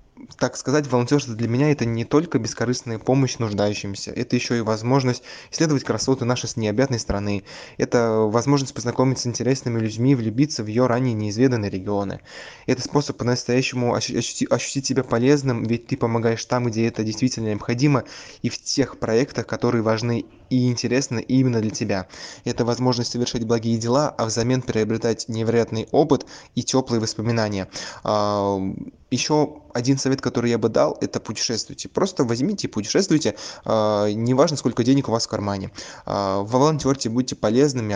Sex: male